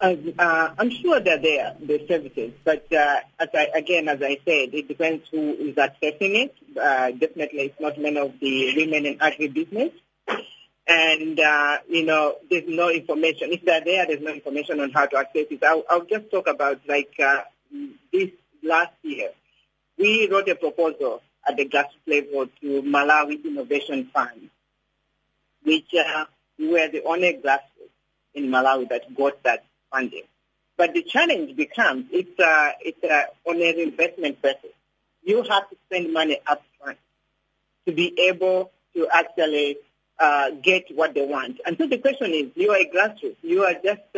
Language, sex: English, female